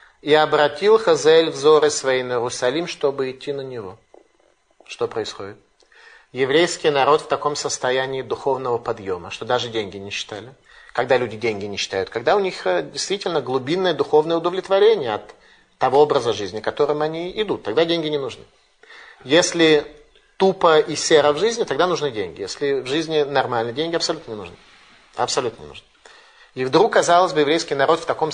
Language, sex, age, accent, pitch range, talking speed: Russian, male, 30-49, native, 135-180 Hz, 160 wpm